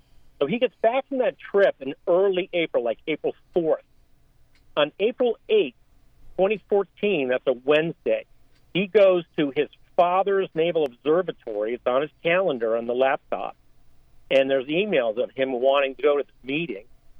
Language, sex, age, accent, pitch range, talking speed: English, male, 50-69, American, 135-190 Hz, 155 wpm